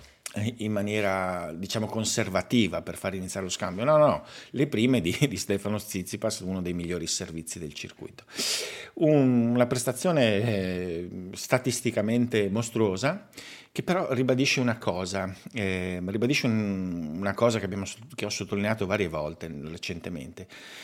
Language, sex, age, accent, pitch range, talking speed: Italian, male, 50-69, native, 90-115 Hz, 140 wpm